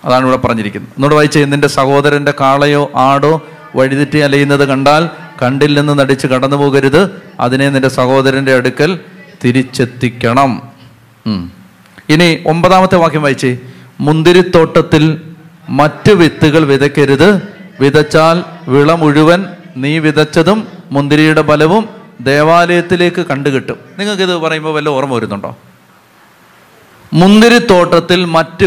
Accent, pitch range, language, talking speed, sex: native, 140-180 Hz, Malayalam, 95 wpm, male